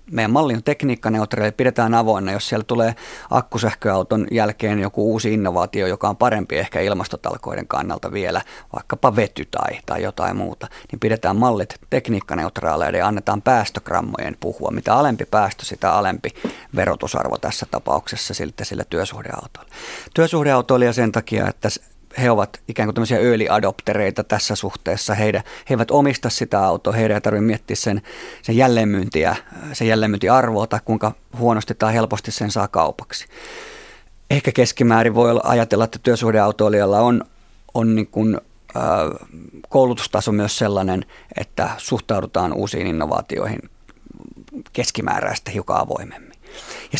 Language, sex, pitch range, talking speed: Finnish, male, 105-120 Hz, 130 wpm